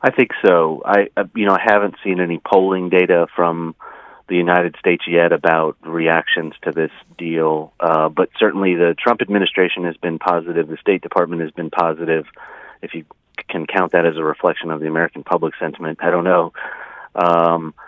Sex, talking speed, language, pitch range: male, 180 wpm, English, 85-100 Hz